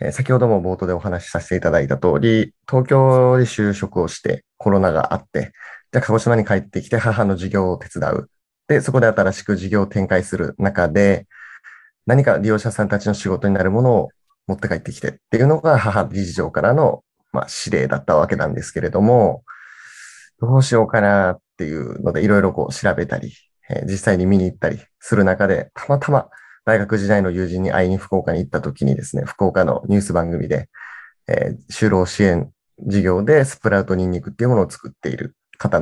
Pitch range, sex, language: 90-115 Hz, male, Japanese